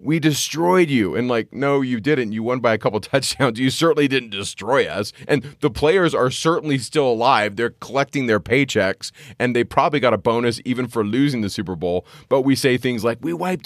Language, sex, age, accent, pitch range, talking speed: English, male, 30-49, American, 105-140 Hz, 215 wpm